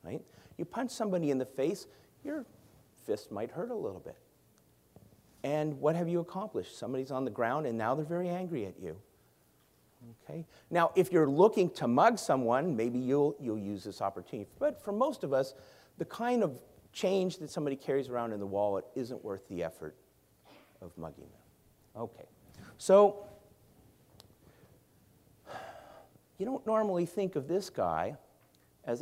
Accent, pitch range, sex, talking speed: American, 130-195 Hz, male, 160 wpm